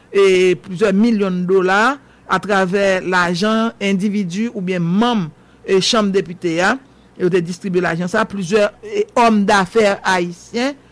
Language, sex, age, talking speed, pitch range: English, male, 60-79, 145 wpm, 185-220 Hz